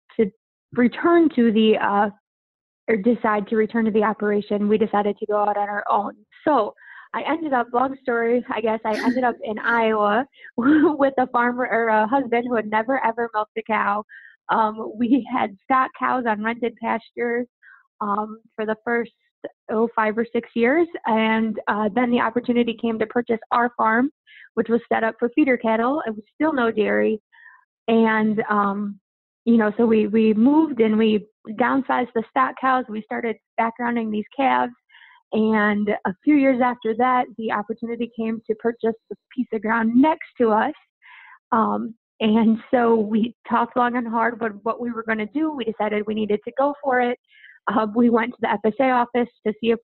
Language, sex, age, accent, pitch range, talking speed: English, female, 20-39, American, 220-245 Hz, 185 wpm